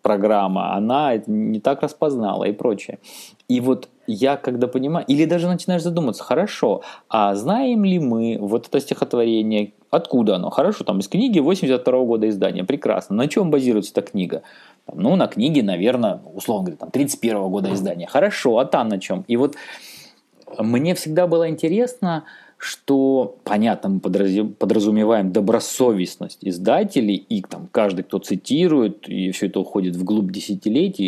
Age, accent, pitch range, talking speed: 20-39, native, 100-140 Hz, 145 wpm